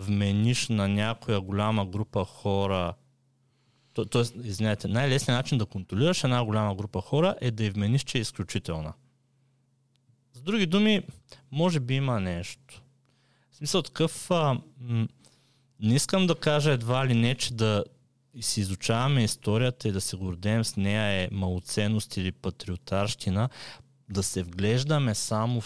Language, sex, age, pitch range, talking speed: Bulgarian, male, 30-49, 95-130 Hz, 145 wpm